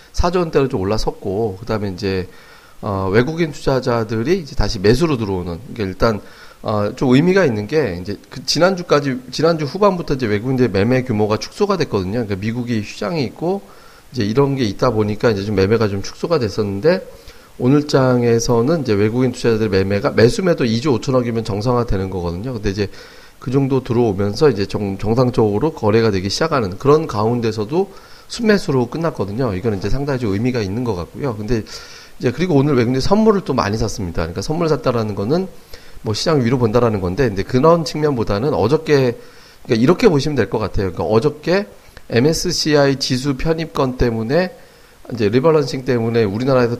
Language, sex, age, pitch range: Korean, male, 30-49, 105-150 Hz